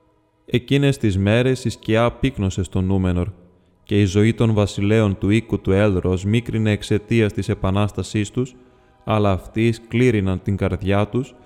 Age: 20-39